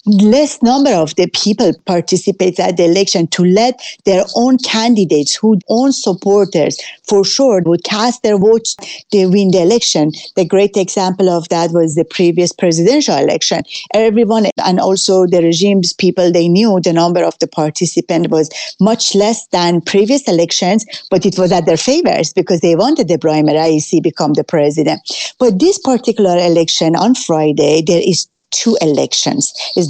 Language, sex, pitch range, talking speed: English, female, 170-215 Hz, 165 wpm